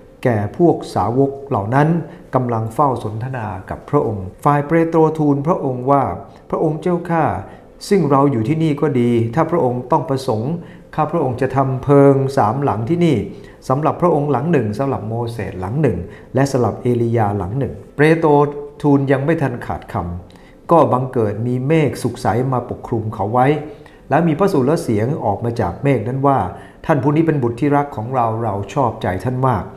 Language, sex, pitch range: English, male, 110-145 Hz